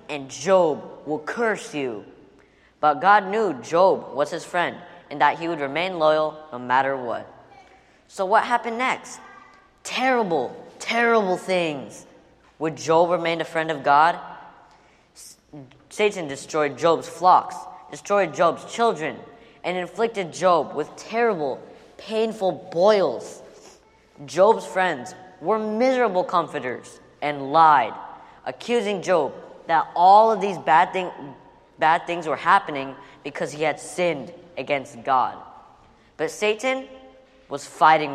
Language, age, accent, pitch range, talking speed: English, 20-39, American, 150-215 Hz, 125 wpm